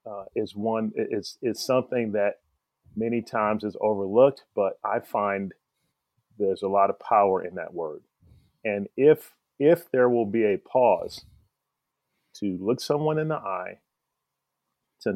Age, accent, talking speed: 40-59, American, 145 wpm